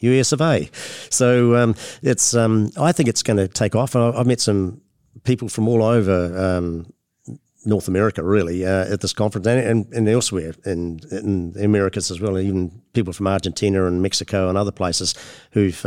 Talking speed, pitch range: 180 wpm, 95-120 Hz